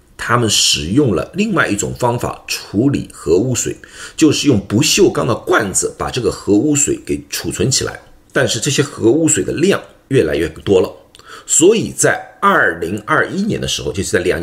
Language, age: Chinese, 50-69